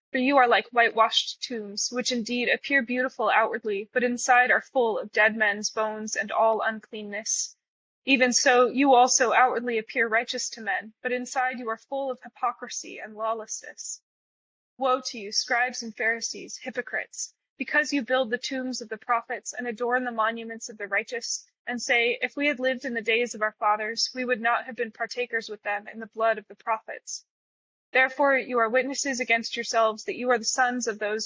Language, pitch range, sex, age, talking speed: English, 220-255 Hz, female, 20-39, 195 wpm